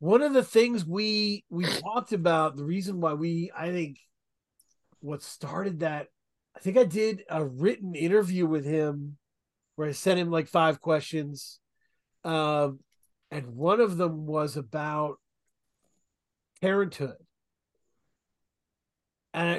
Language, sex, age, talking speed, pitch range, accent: English, male, 40-59, 130 wpm, 150-180 Hz, American